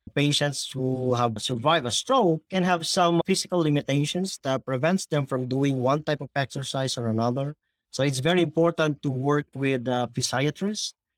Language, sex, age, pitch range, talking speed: English, male, 40-59, 135-170 Hz, 165 wpm